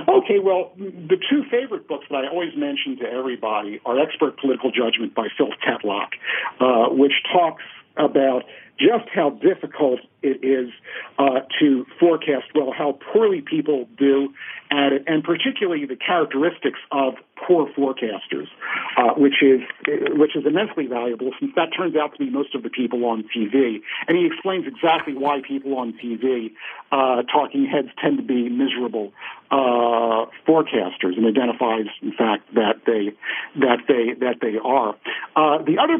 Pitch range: 130-185 Hz